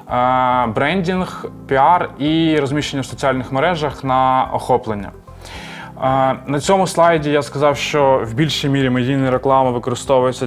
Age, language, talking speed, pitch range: 20-39, Ukrainian, 120 wpm, 125-145 Hz